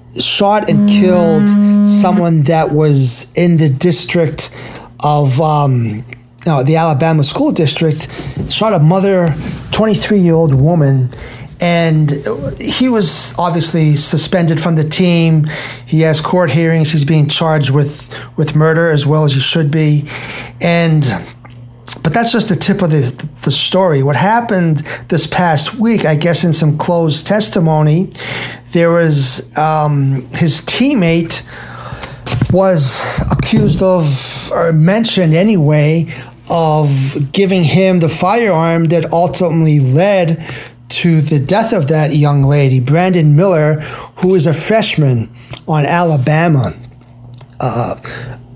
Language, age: English, 30-49